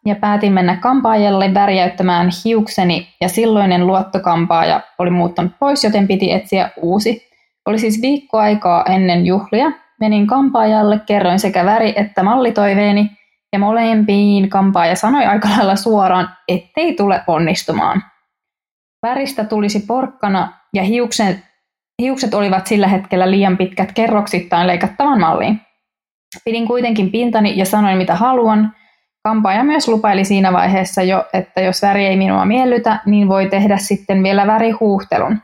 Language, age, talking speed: Finnish, 20-39, 130 wpm